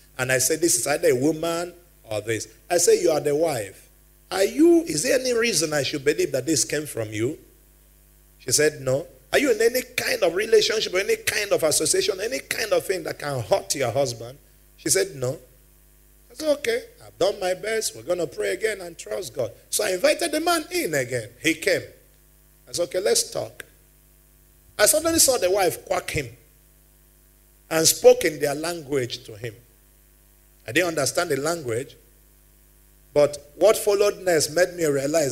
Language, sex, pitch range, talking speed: English, male, 125-185 Hz, 190 wpm